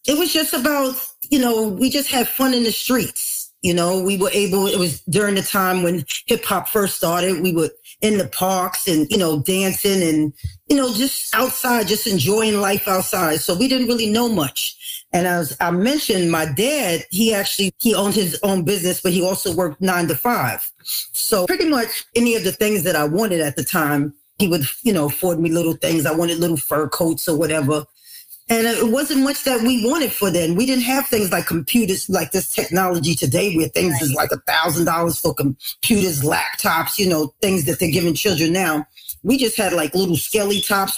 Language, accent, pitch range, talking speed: English, American, 160-215 Hz, 210 wpm